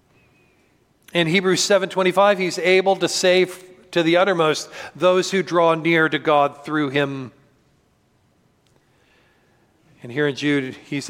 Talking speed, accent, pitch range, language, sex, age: 125 wpm, American, 140-180 Hz, English, male, 40-59